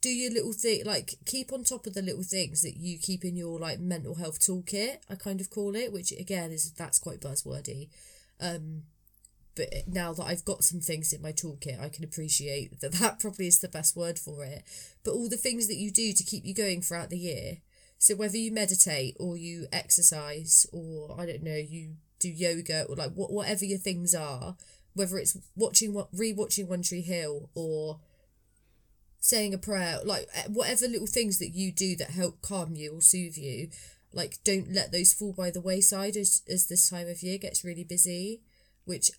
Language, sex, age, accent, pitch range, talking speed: English, female, 20-39, British, 160-200 Hz, 205 wpm